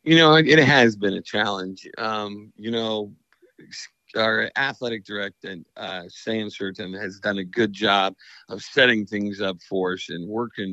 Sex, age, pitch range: male, 50-69, 100-115 Hz